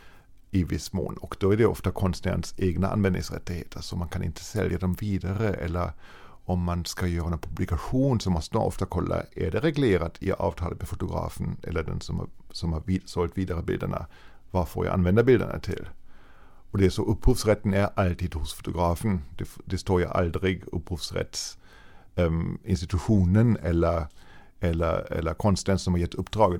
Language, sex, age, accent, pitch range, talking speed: Swedish, male, 50-69, German, 90-100 Hz, 175 wpm